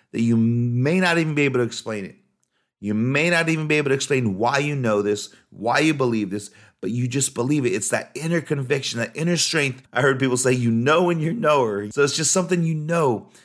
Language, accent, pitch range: English, American, 105-145 Hz